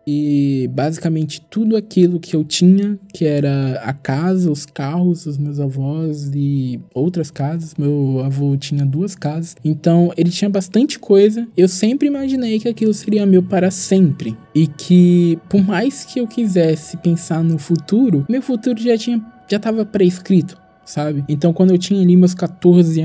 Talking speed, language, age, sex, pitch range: 160 wpm, Portuguese, 20-39, male, 145-180 Hz